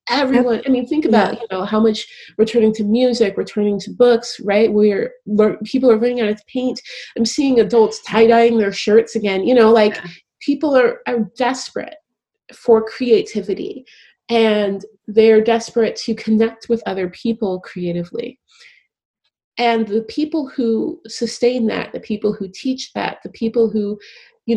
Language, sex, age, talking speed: English, female, 30-49, 160 wpm